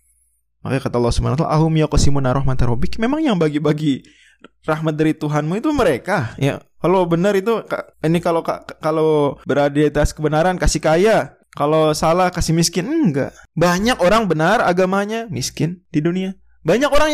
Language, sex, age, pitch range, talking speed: Indonesian, male, 20-39, 135-180 Hz, 135 wpm